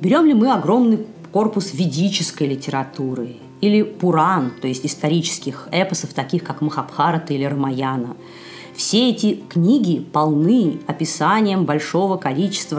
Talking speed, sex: 115 wpm, female